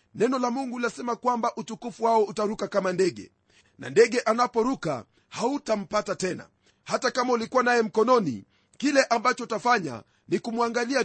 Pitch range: 195-240 Hz